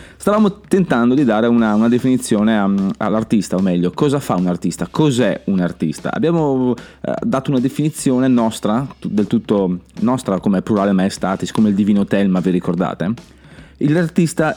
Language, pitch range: Italian, 95-130 Hz